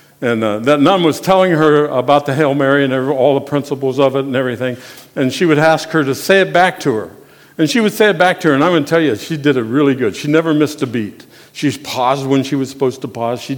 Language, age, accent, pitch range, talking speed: English, 60-79, American, 115-155 Hz, 280 wpm